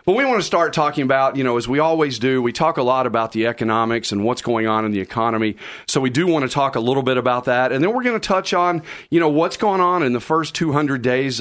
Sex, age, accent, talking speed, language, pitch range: male, 40-59, American, 290 wpm, English, 115-140 Hz